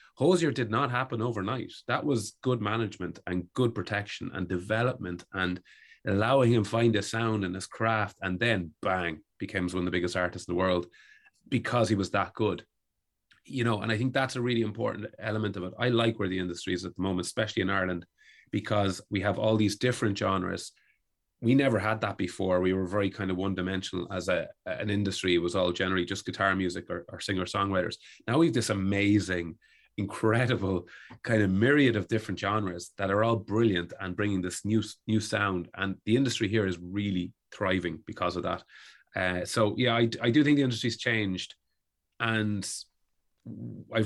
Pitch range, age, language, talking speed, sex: 90-110 Hz, 30-49, English, 190 wpm, male